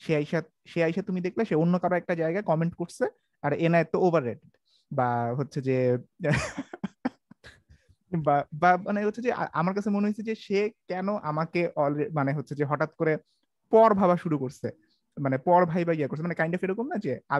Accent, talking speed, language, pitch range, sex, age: native, 40 wpm, Bengali, 140-190 Hz, male, 30-49